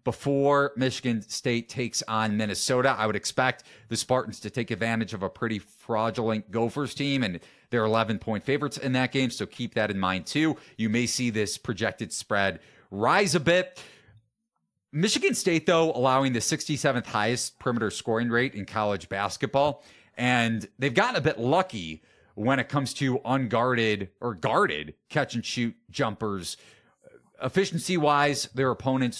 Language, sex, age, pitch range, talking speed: English, male, 30-49, 115-140 Hz, 150 wpm